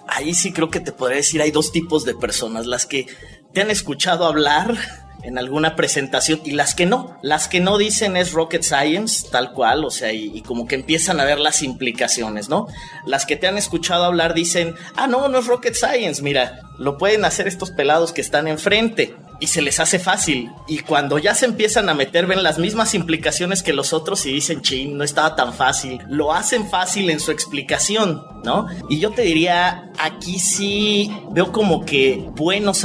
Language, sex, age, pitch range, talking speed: Spanish, male, 30-49, 135-180 Hz, 205 wpm